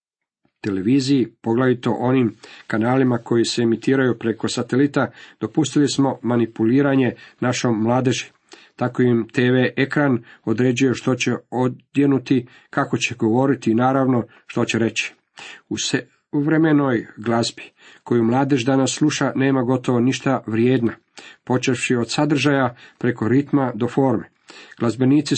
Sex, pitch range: male, 115-135 Hz